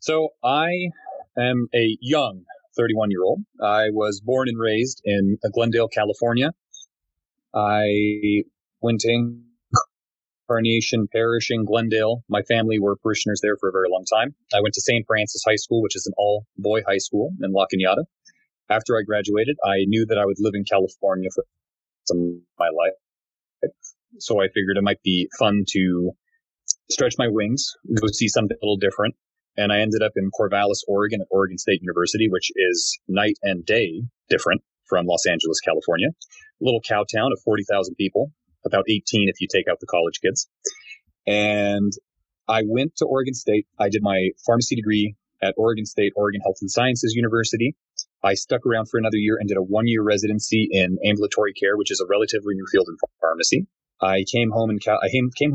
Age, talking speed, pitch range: 30-49, 180 wpm, 100-120 Hz